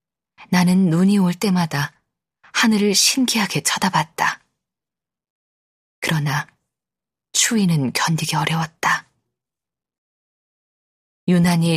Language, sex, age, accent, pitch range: Korean, female, 20-39, native, 155-185 Hz